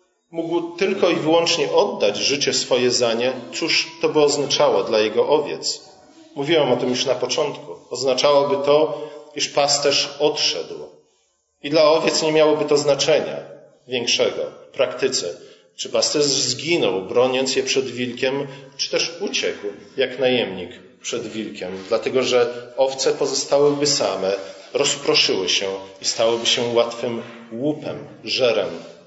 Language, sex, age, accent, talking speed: Polish, male, 40-59, native, 130 wpm